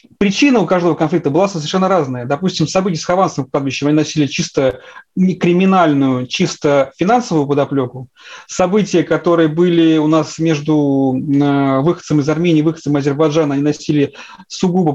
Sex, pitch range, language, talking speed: male, 150-190 Hz, Russian, 135 wpm